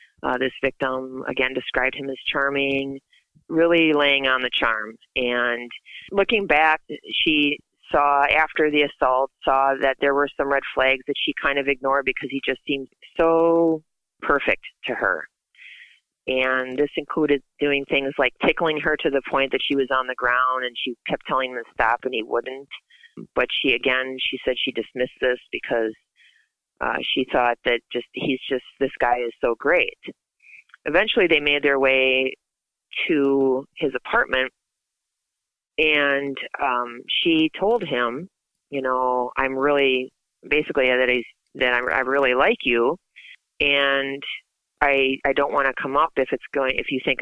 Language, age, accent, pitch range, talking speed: English, 30-49, American, 130-145 Hz, 165 wpm